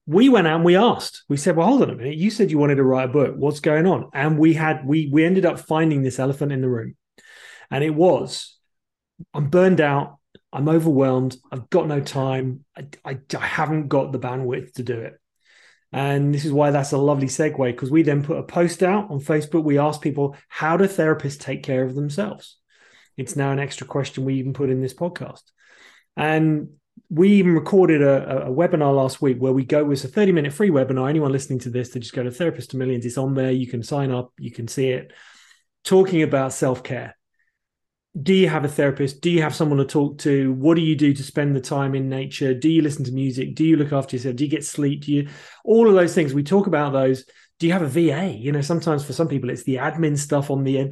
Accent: British